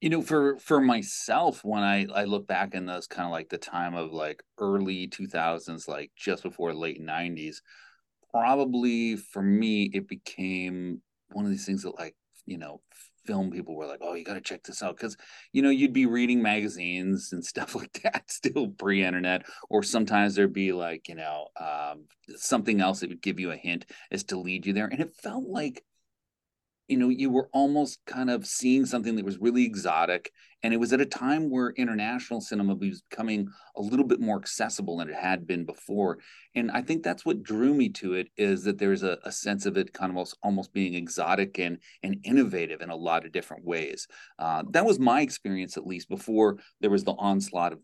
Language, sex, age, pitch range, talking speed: English, male, 30-49, 95-125 Hz, 210 wpm